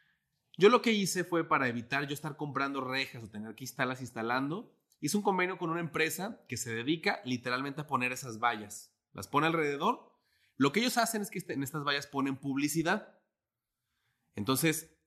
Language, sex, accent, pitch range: English, male, Mexican, 125-165 Hz